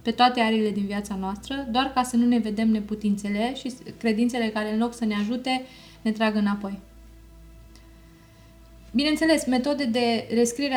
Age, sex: 20-39, female